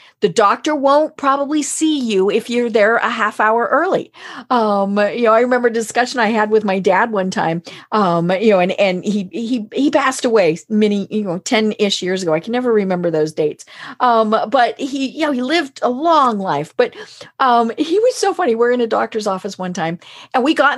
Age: 40-59